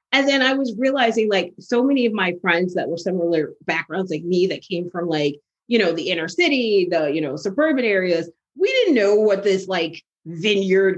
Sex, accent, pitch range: female, American, 180-260 Hz